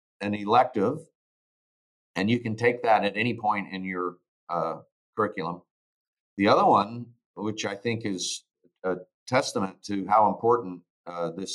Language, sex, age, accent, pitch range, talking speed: English, male, 50-69, American, 100-120 Hz, 145 wpm